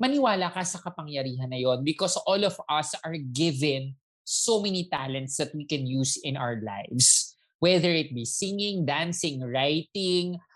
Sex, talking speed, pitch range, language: male, 155 wpm, 145-195 Hz, Filipino